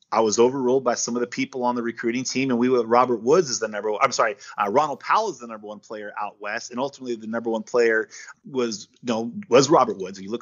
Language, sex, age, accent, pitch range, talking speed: English, male, 30-49, American, 115-135 Hz, 275 wpm